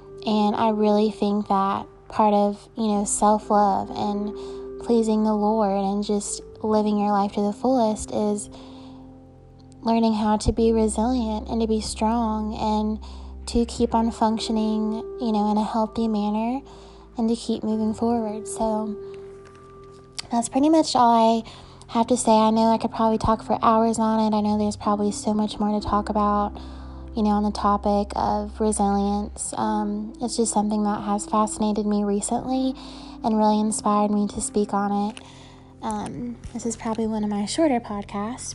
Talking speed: 170 wpm